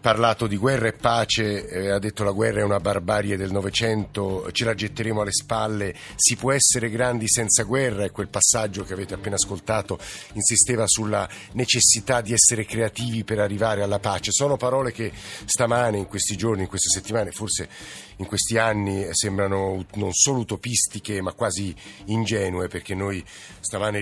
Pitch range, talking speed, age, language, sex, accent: 100-115 Hz, 170 wpm, 50-69, Italian, male, native